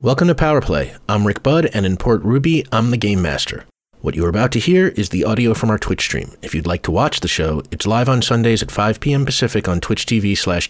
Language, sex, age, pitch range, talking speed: English, male, 30-49, 105-160 Hz, 255 wpm